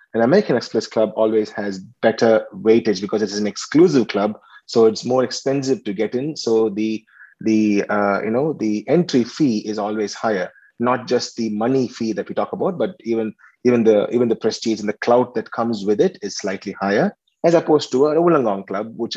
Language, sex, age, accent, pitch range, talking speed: English, male, 30-49, Indian, 110-125 Hz, 205 wpm